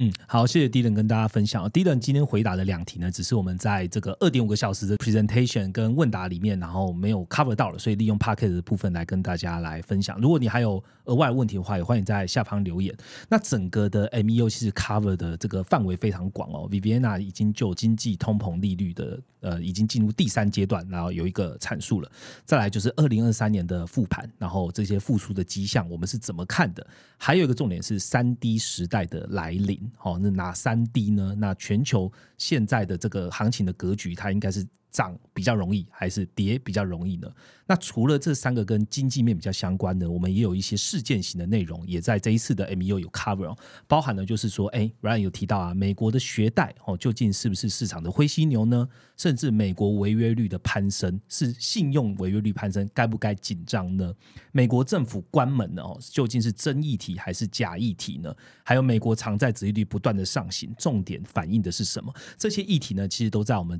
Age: 30-49